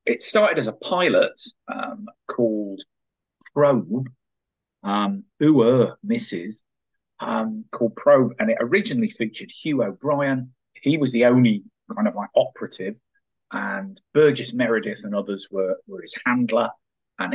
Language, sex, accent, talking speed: English, male, British, 130 wpm